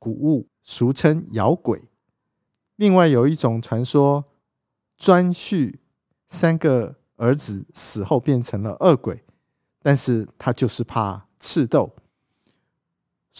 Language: Chinese